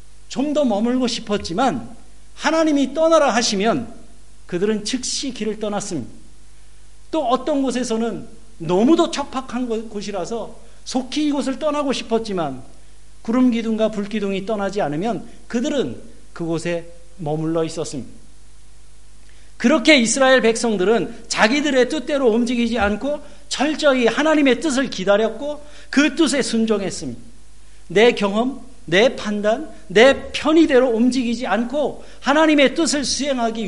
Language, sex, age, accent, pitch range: Korean, male, 50-69, native, 200-265 Hz